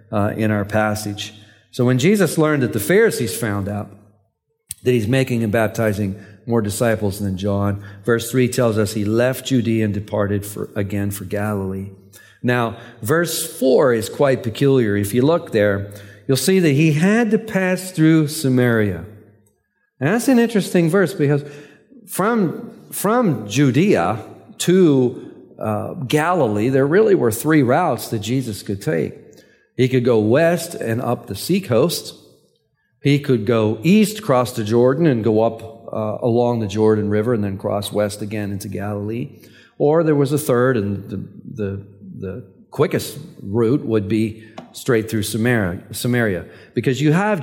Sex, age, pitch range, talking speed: male, 50-69, 105-135 Hz, 155 wpm